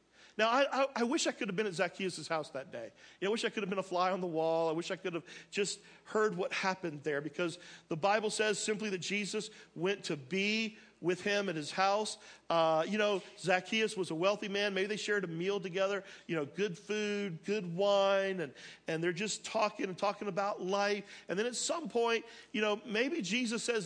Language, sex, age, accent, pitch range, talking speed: English, male, 40-59, American, 180-230 Hz, 225 wpm